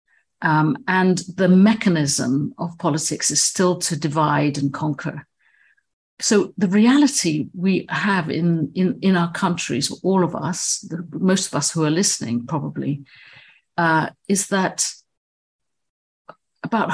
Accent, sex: British, female